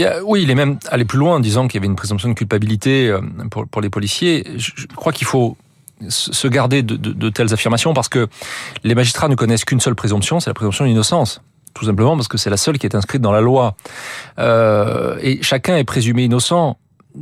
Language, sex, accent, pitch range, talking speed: French, male, French, 115-150 Hz, 210 wpm